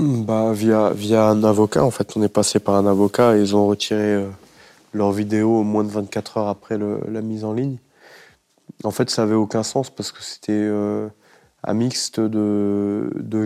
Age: 20-39